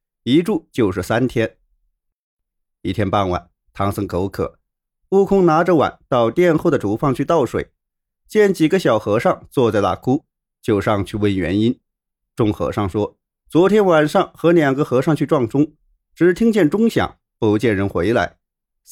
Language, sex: Chinese, male